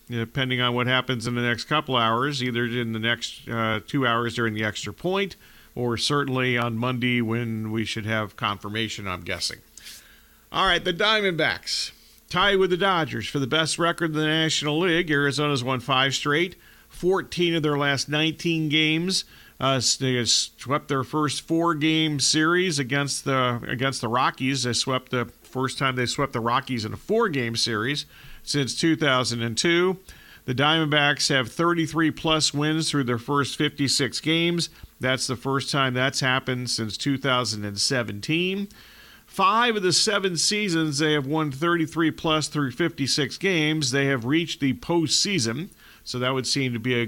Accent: American